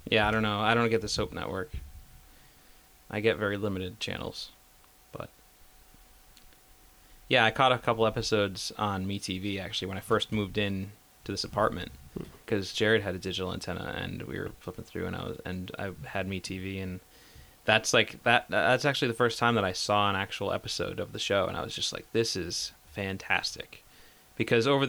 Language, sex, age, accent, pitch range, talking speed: English, male, 20-39, American, 95-115 Hz, 190 wpm